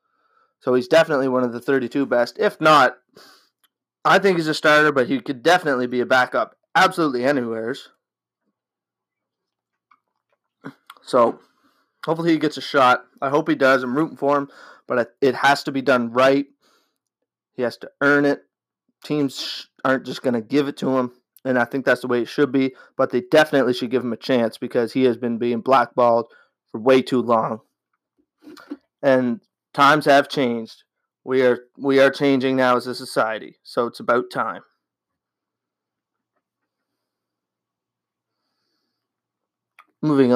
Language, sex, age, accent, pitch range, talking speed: English, male, 30-49, American, 125-150 Hz, 155 wpm